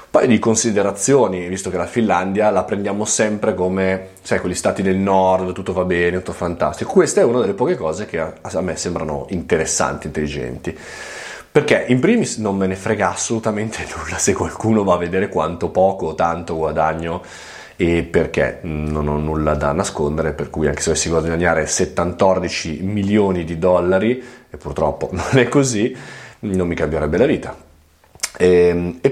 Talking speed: 170 wpm